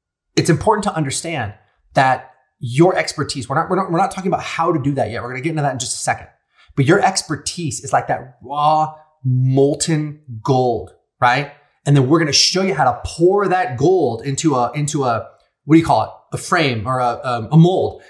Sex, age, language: male, 30-49, English